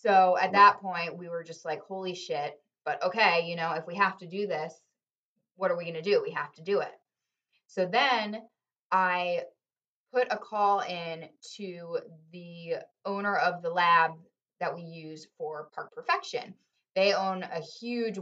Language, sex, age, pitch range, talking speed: English, female, 20-39, 160-195 Hz, 180 wpm